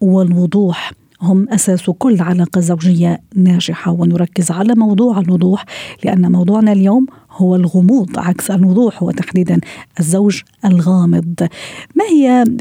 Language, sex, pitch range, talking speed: Arabic, female, 180-200 Hz, 110 wpm